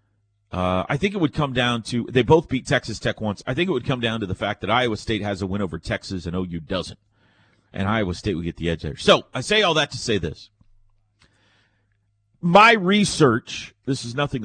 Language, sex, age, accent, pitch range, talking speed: English, male, 40-59, American, 100-125 Hz, 230 wpm